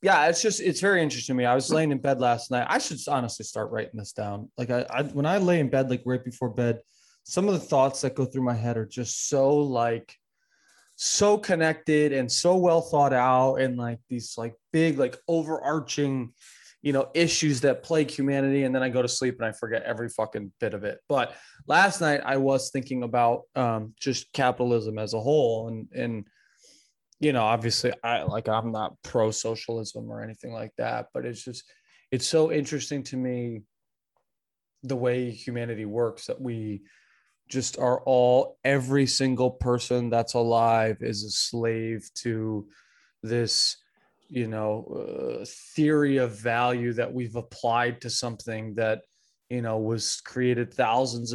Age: 20-39